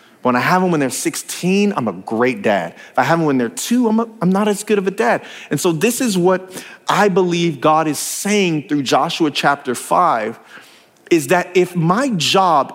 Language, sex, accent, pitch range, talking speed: English, male, American, 190-285 Hz, 215 wpm